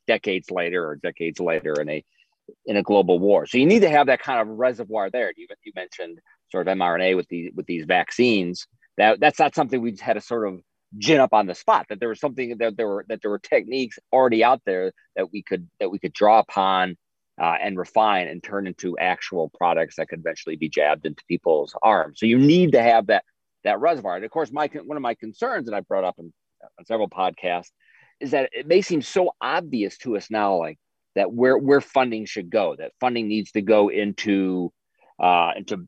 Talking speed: 225 wpm